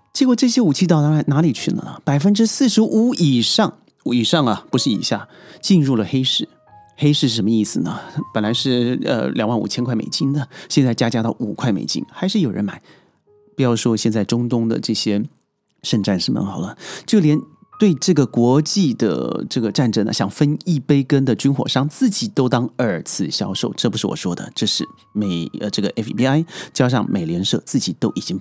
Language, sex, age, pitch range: Chinese, male, 30-49, 110-160 Hz